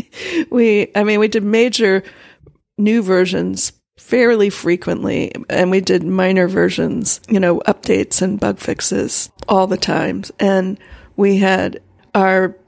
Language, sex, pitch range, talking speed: English, female, 180-210 Hz, 135 wpm